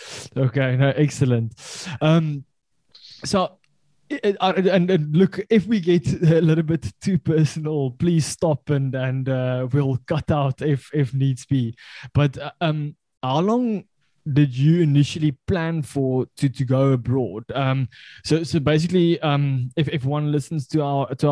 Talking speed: 150 wpm